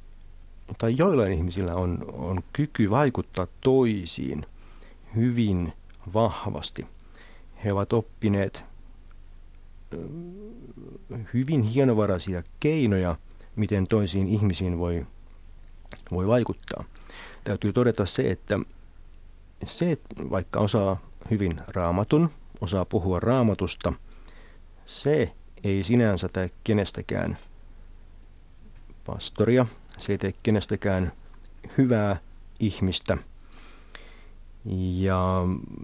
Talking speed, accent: 80 wpm, native